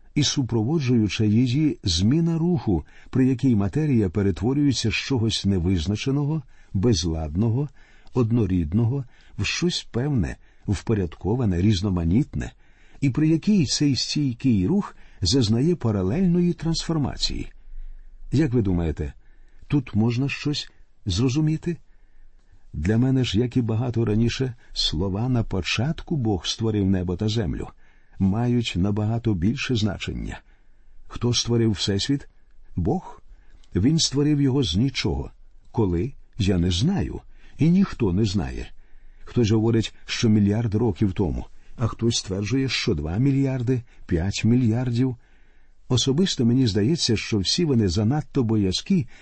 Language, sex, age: Ukrainian, male, 50-69